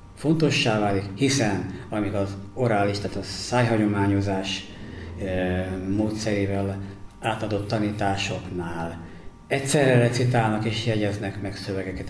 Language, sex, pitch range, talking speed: Hungarian, male, 95-115 Hz, 90 wpm